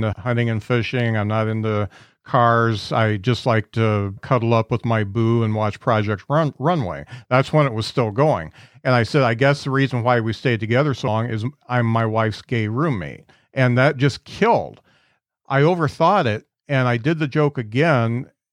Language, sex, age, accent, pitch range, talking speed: English, male, 50-69, American, 115-140 Hz, 190 wpm